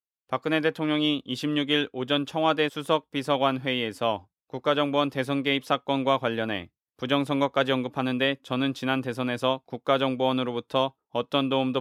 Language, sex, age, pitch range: Korean, male, 20-39, 120-140 Hz